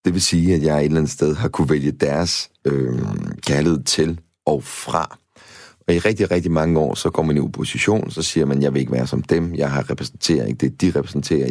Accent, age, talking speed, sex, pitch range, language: native, 30-49, 250 wpm, male, 75-90 Hz, Danish